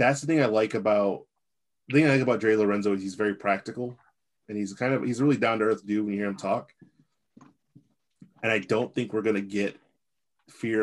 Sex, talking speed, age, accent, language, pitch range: male, 235 wpm, 30-49, American, English, 105-125 Hz